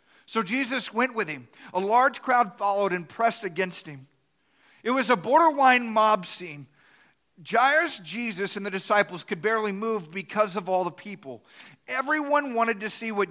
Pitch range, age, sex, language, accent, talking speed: 180-230 Hz, 40-59, male, English, American, 165 wpm